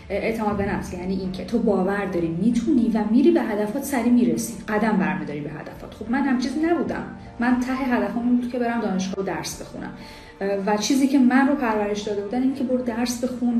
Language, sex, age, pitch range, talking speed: Persian, female, 10-29, 200-255 Hz, 200 wpm